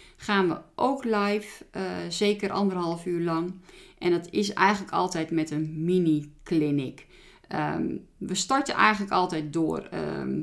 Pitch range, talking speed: 165-205 Hz, 140 wpm